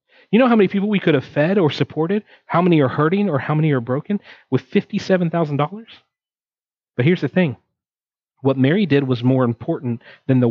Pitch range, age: 120-145 Hz, 40-59